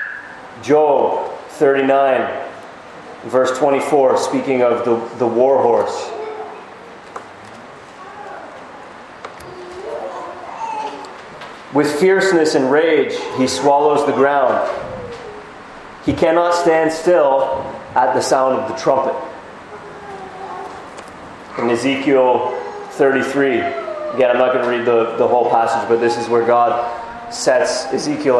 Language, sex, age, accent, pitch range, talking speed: English, male, 30-49, American, 120-155 Hz, 100 wpm